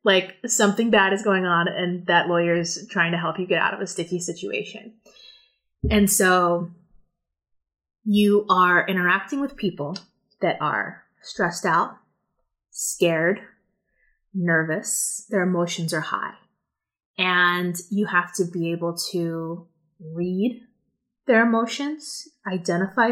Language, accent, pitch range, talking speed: English, American, 175-230 Hz, 125 wpm